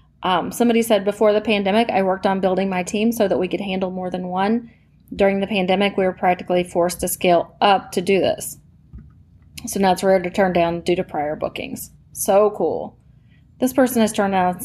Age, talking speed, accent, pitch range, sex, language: 30-49, 210 wpm, American, 190-235 Hz, female, English